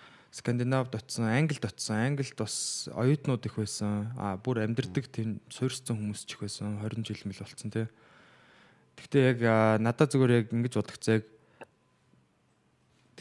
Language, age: Korean, 20-39